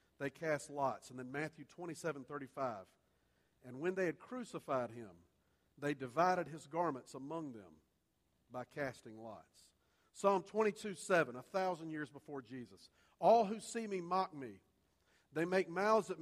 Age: 50-69